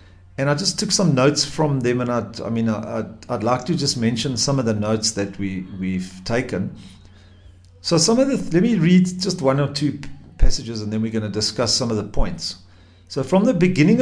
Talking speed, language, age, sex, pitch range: 230 wpm, English, 50-69, male, 100-155 Hz